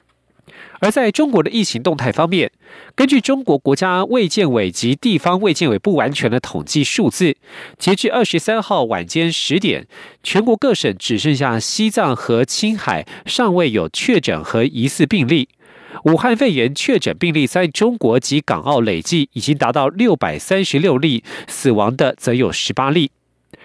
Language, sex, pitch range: German, male, 140-205 Hz